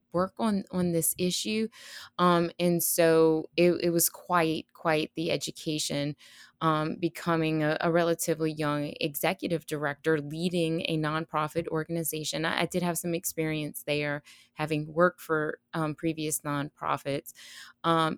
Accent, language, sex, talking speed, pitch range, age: American, English, female, 135 wpm, 155-170 Hz, 20-39